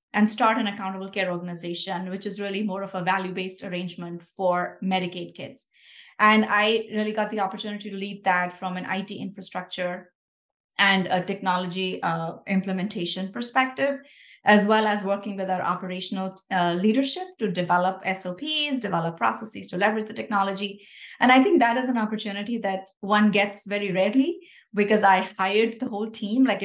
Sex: female